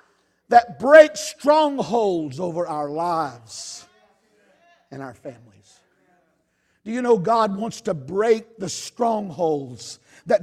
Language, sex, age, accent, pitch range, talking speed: English, male, 50-69, American, 230-365 Hz, 110 wpm